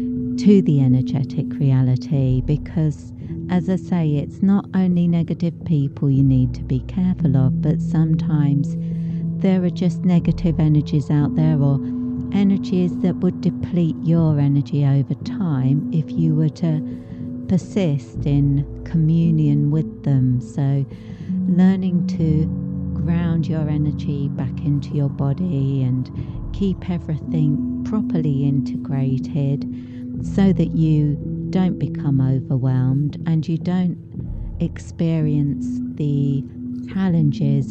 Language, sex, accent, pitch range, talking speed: English, female, British, 130-165 Hz, 115 wpm